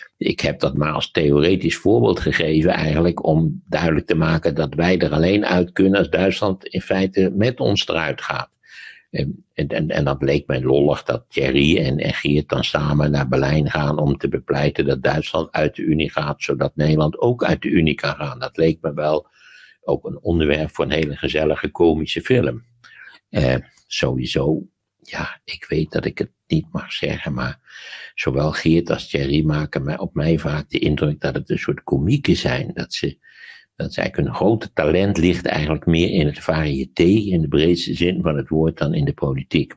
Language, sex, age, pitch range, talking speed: Dutch, male, 60-79, 75-95 Hz, 190 wpm